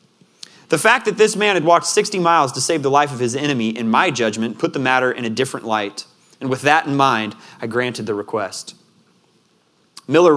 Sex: male